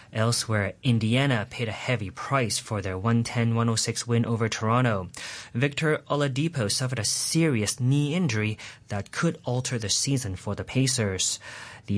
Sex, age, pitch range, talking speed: male, 30-49, 105-130 Hz, 145 wpm